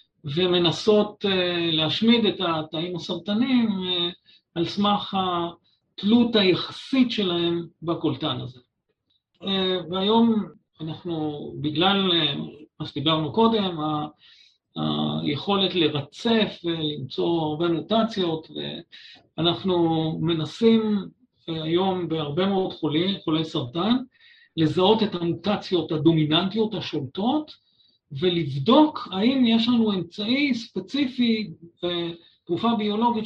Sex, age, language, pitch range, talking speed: male, 50-69, Hebrew, 155-205 Hz, 80 wpm